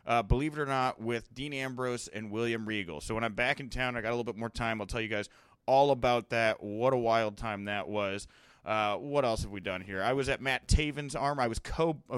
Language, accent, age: English, American, 30-49